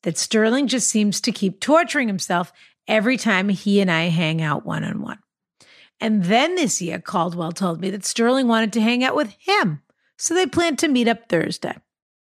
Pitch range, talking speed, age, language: 185-255 Hz, 185 wpm, 50-69, English